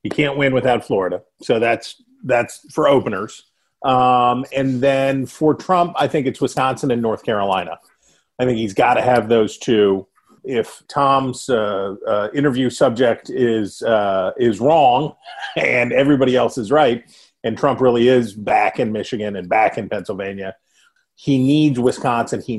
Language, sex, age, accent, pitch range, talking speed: English, male, 40-59, American, 110-140 Hz, 160 wpm